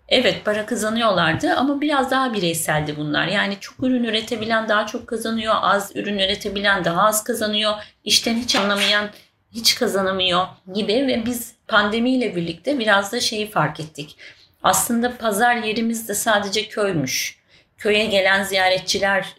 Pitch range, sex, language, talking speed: 185-225 Hz, female, Turkish, 135 wpm